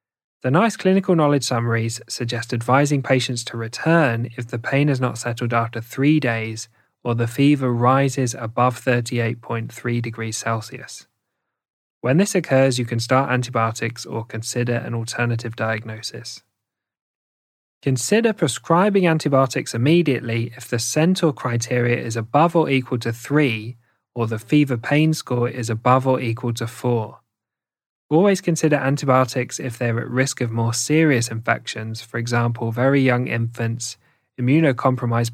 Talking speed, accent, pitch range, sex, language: 140 wpm, British, 115-135 Hz, male, English